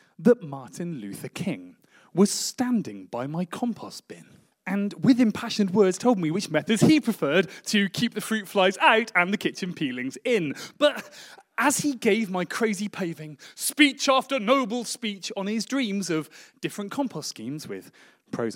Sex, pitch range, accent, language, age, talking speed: male, 175-250 Hz, British, English, 30-49, 165 wpm